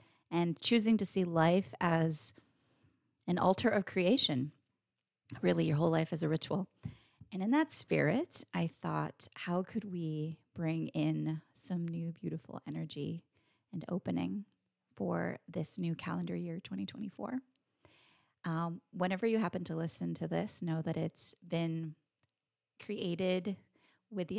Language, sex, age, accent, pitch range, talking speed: English, female, 30-49, American, 155-180 Hz, 135 wpm